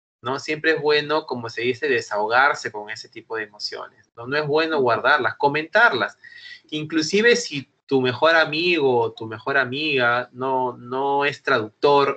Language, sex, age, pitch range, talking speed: English, male, 30-49, 135-195 Hz, 160 wpm